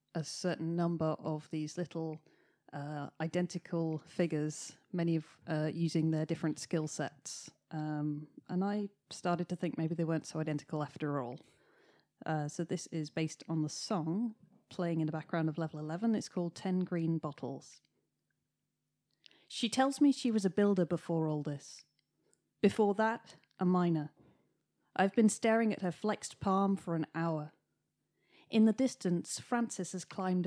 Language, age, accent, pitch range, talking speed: English, 30-49, British, 160-195 Hz, 160 wpm